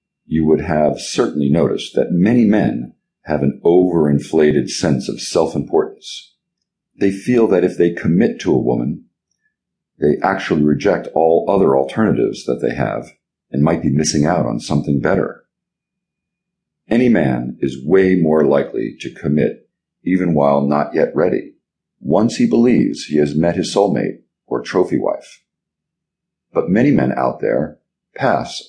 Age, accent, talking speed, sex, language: 50-69, American, 145 wpm, male, English